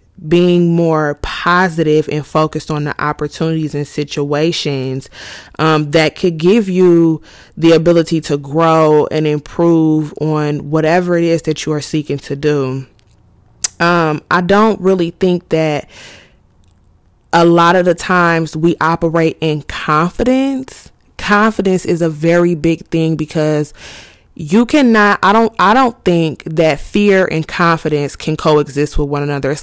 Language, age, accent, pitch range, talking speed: English, 20-39, American, 150-170 Hz, 140 wpm